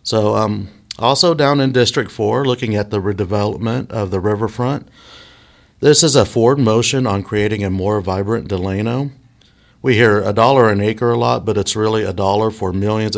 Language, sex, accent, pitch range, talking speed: English, male, American, 95-115 Hz, 180 wpm